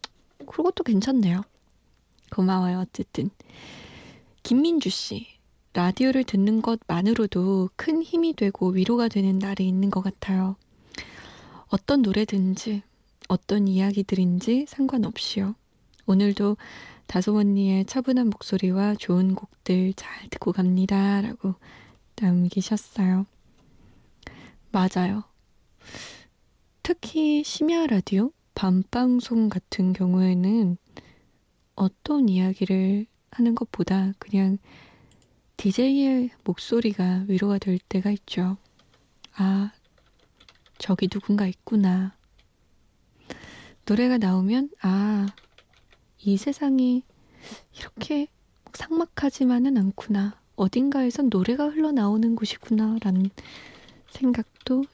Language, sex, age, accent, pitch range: Korean, female, 20-39, native, 190-235 Hz